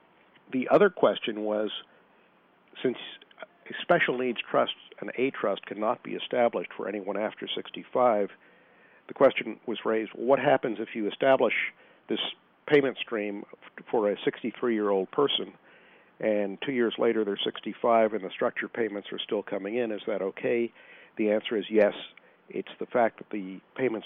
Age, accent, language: 50-69, American, English